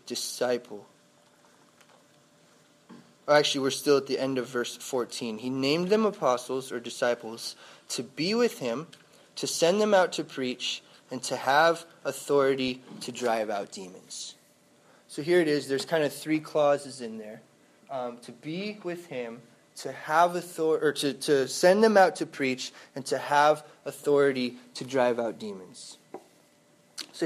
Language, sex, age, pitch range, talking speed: English, male, 20-39, 125-160 Hz, 155 wpm